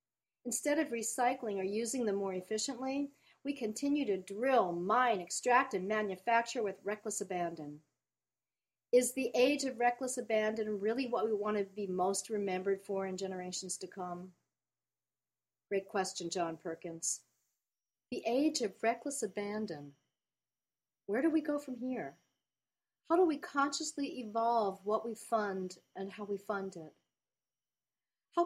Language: English